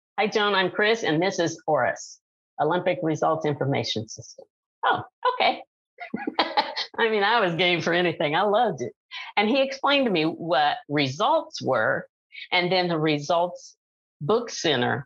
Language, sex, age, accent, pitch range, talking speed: English, female, 50-69, American, 155-205 Hz, 150 wpm